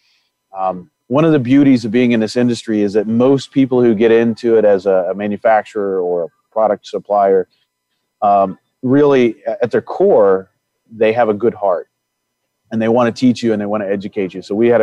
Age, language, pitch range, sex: 40-59, English, 95-115 Hz, male